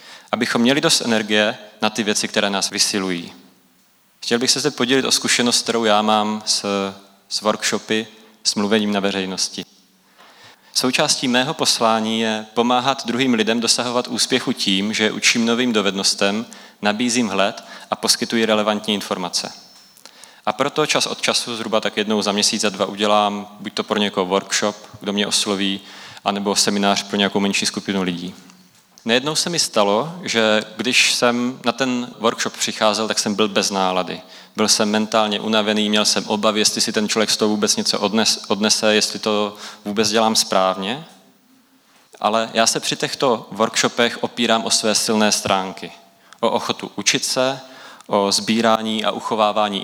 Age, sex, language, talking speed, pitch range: 30-49, male, Czech, 160 wpm, 105-115 Hz